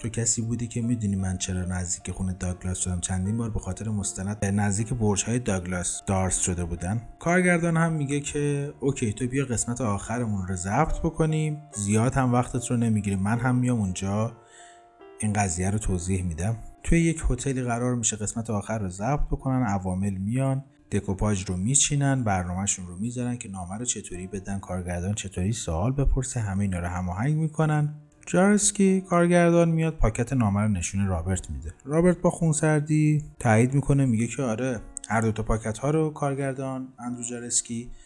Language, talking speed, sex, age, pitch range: Persian, 165 wpm, male, 30-49, 95-135 Hz